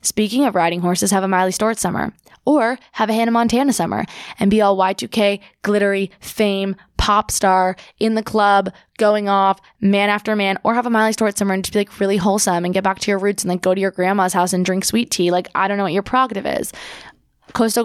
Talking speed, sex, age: 235 wpm, female, 20-39